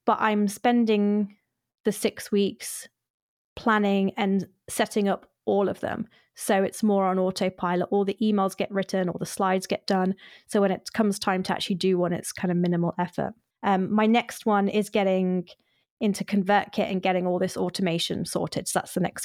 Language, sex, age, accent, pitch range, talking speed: English, female, 20-39, British, 190-225 Hz, 185 wpm